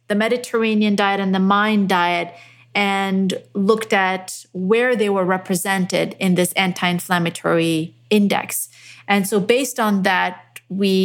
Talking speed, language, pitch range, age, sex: 130 wpm, English, 180-215 Hz, 30-49, female